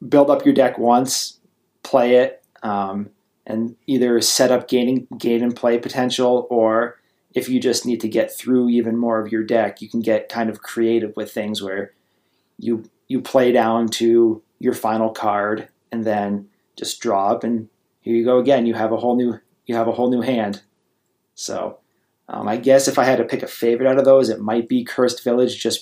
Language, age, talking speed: English, 30-49, 205 wpm